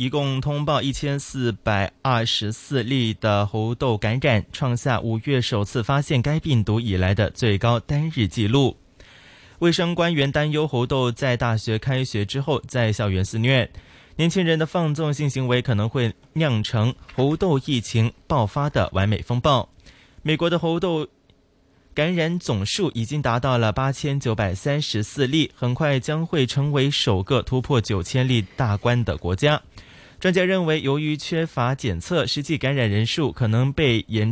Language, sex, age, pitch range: Chinese, male, 20-39, 110-150 Hz